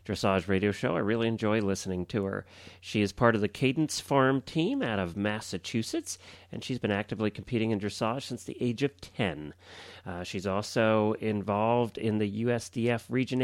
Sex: male